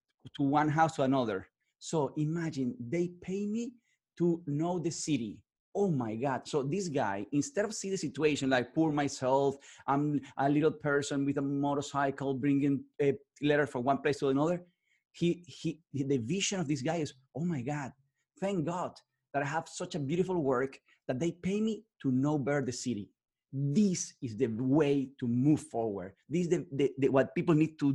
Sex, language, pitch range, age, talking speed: male, English, 140-175 Hz, 30-49, 185 wpm